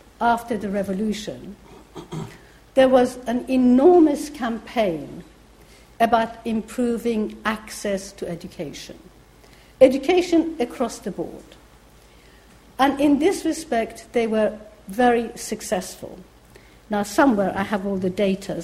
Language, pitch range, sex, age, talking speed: English, 200-280 Hz, female, 60-79, 105 wpm